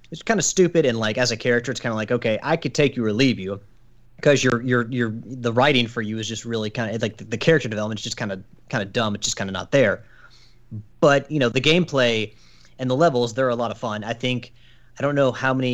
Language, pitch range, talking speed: English, 110-130 Hz, 270 wpm